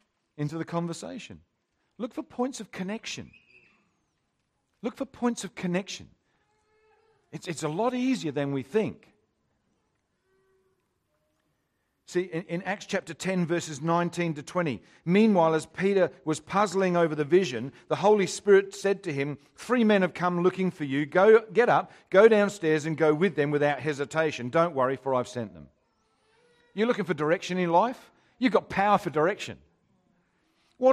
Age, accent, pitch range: 50-69, Australian, 155-215 Hz